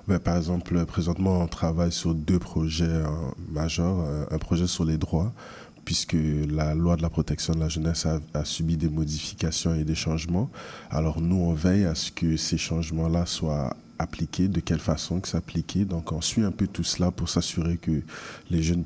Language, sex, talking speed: French, male, 195 wpm